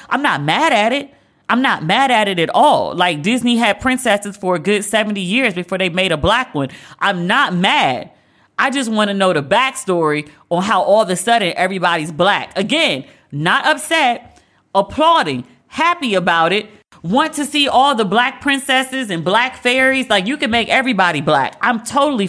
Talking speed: 190 wpm